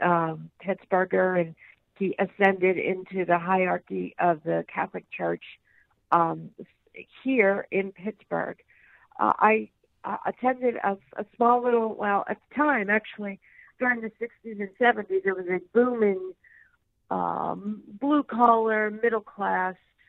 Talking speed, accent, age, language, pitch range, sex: 120 wpm, American, 50-69, English, 180-220 Hz, female